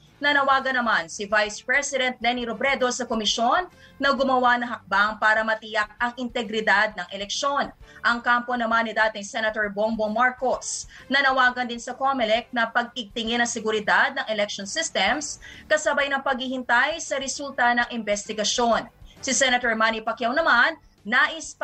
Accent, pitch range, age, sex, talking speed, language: Filipino, 225-270 Hz, 20-39, female, 140 wpm, English